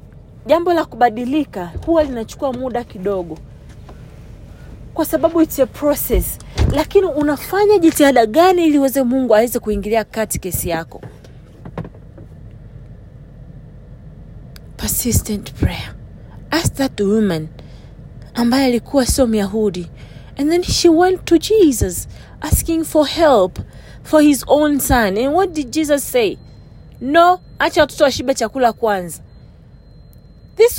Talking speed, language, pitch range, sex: 110 wpm, English, 220-345 Hz, female